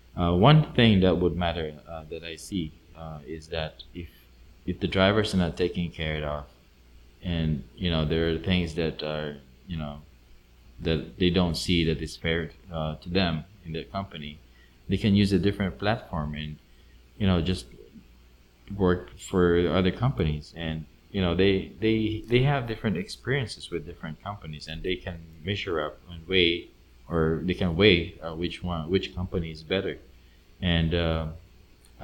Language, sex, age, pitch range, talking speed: English, male, 20-39, 80-95 Hz, 170 wpm